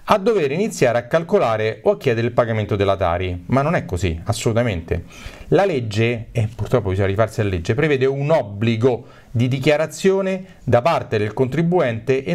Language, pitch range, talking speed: Italian, 110-185 Hz, 170 wpm